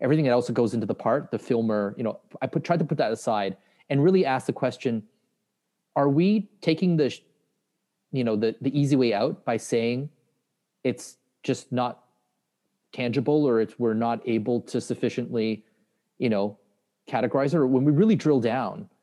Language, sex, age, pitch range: English, male, 30-49, 110-140 Hz